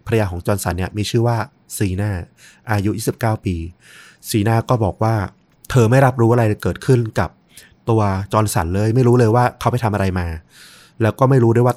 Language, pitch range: Thai, 95-120 Hz